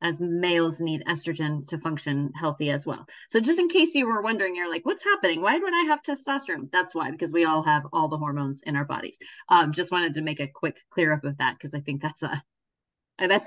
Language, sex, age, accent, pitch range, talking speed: English, female, 30-49, American, 160-205 Hz, 240 wpm